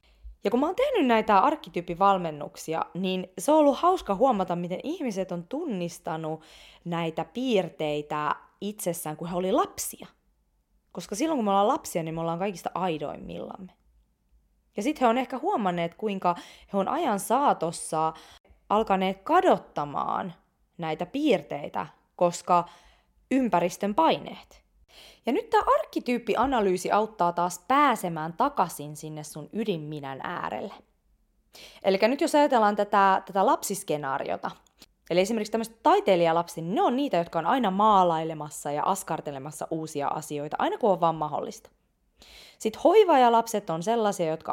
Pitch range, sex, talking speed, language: 160-225 Hz, female, 130 wpm, English